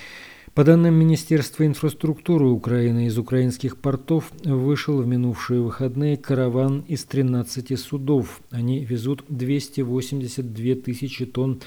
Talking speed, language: 110 wpm, Russian